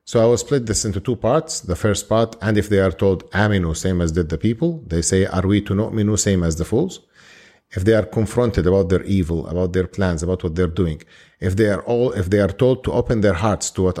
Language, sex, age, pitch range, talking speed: English, male, 40-59, 95-110 Hz, 260 wpm